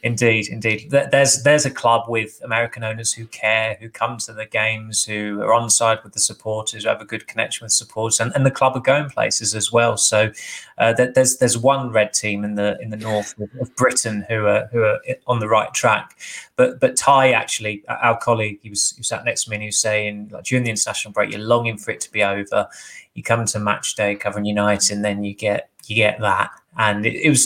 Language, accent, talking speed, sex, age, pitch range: English, British, 235 wpm, male, 20-39, 105-125 Hz